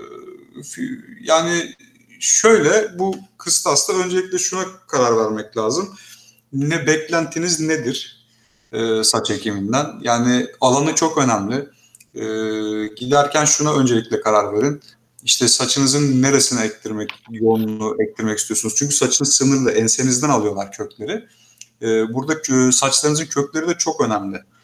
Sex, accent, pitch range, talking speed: male, native, 110-145 Hz, 100 wpm